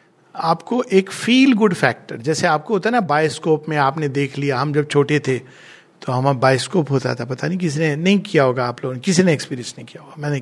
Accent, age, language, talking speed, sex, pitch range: native, 50-69, Hindi, 230 wpm, male, 140-215 Hz